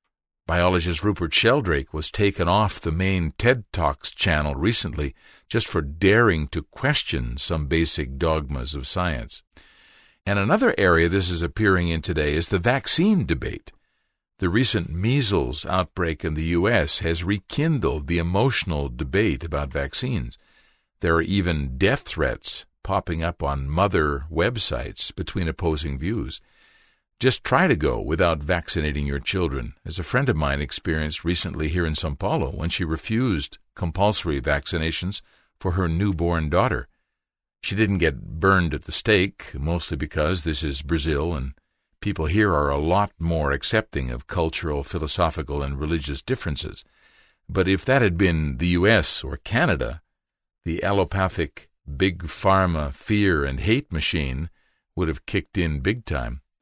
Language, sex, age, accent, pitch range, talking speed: English, male, 50-69, American, 75-95 Hz, 145 wpm